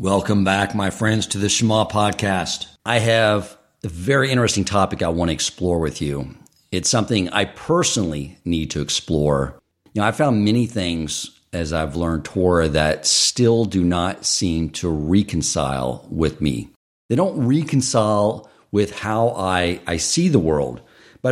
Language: English